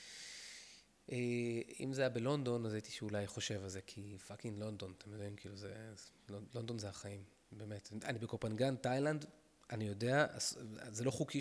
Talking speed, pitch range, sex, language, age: 165 wpm, 105-125 Hz, male, Hebrew, 30-49